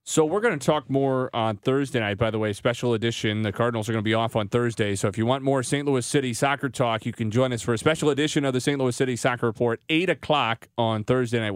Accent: American